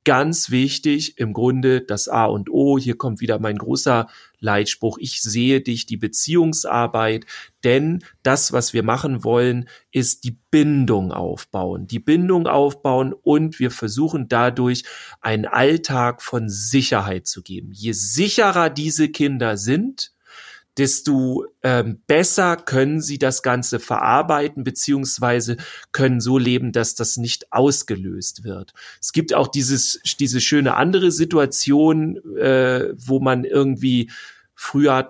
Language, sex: German, male